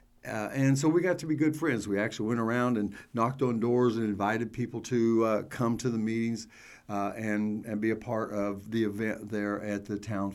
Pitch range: 105-130 Hz